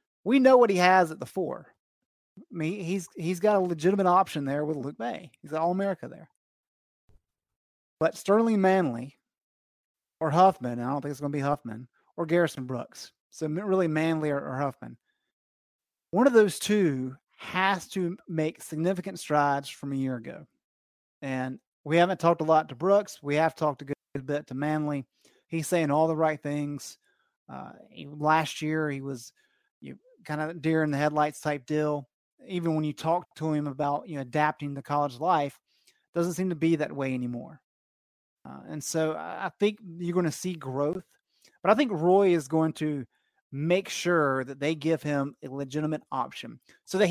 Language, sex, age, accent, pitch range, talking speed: English, male, 30-49, American, 145-185 Hz, 175 wpm